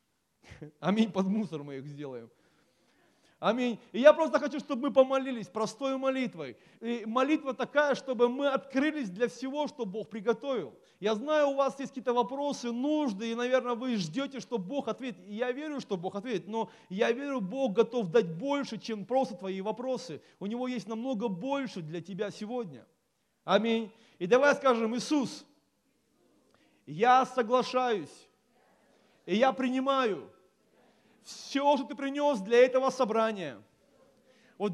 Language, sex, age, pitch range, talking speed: Russian, male, 30-49, 205-260 Hz, 145 wpm